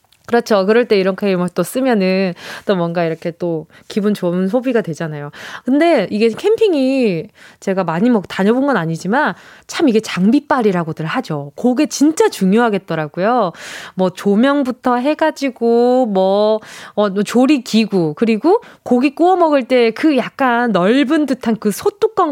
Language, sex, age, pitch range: Korean, female, 20-39, 195-295 Hz